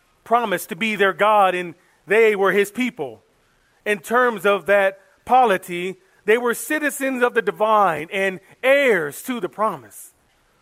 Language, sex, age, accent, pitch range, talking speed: English, male, 40-59, American, 185-235 Hz, 145 wpm